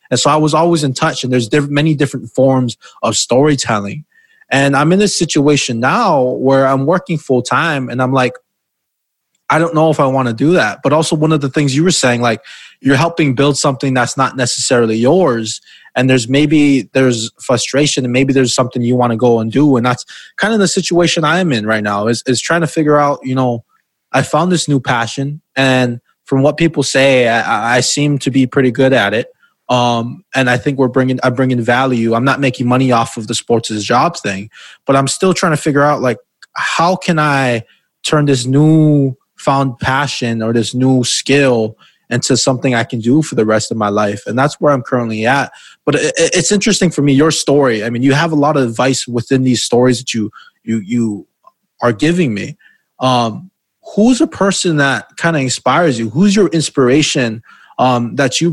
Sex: male